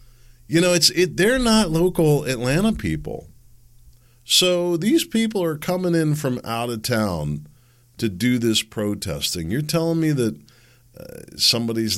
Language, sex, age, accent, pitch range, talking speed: English, male, 40-59, American, 100-150 Hz, 145 wpm